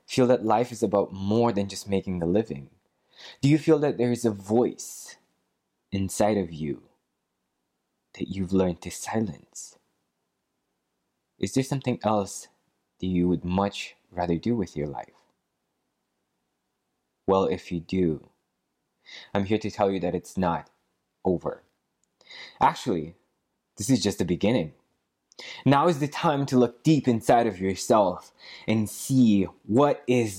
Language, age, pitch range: English, 20-39, 95-135 Hz